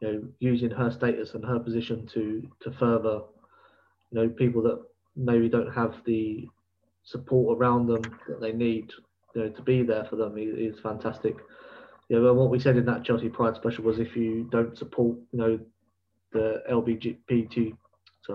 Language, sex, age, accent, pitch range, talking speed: English, male, 20-39, British, 110-125 Hz, 195 wpm